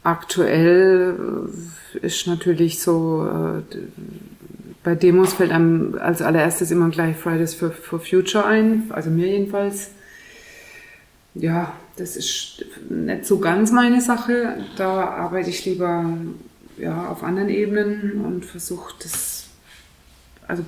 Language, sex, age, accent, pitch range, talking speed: German, female, 30-49, German, 170-195 Hz, 115 wpm